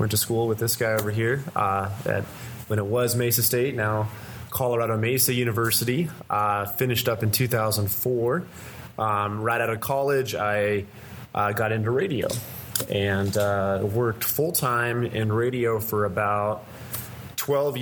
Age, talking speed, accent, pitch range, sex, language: 20-39, 150 wpm, American, 105-125 Hz, male, English